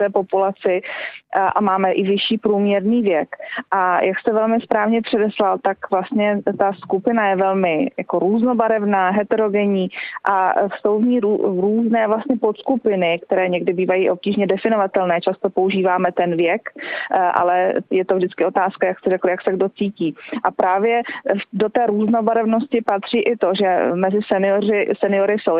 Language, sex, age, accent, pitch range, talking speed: Czech, female, 20-39, native, 190-225 Hz, 145 wpm